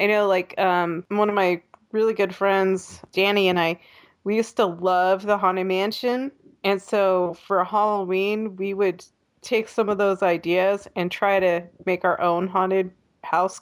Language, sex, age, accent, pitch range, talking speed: English, female, 20-39, American, 185-250 Hz, 170 wpm